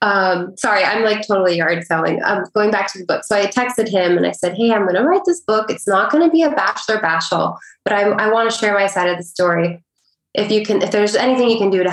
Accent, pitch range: American, 175-215 Hz